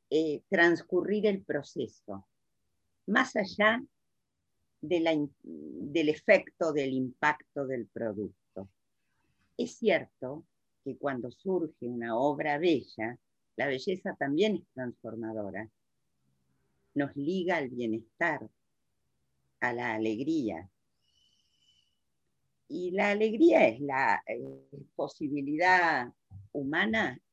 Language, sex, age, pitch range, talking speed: Spanish, female, 50-69, 105-160 Hz, 95 wpm